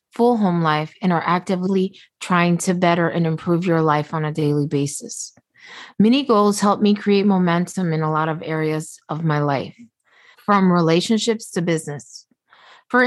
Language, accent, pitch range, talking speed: English, American, 165-210 Hz, 165 wpm